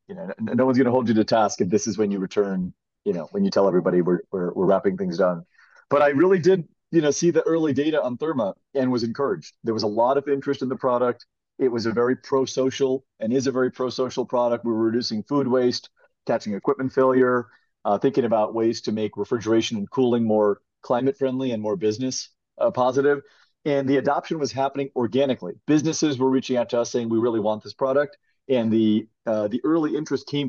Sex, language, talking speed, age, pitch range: male, English, 220 wpm, 30-49, 110-140 Hz